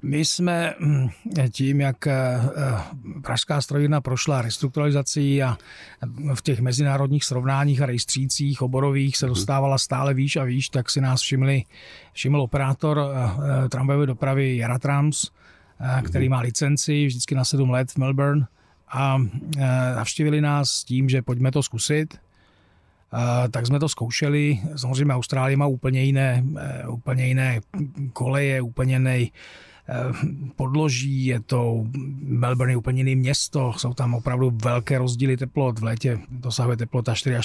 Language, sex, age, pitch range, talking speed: Czech, male, 40-59, 125-145 Hz, 125 wpm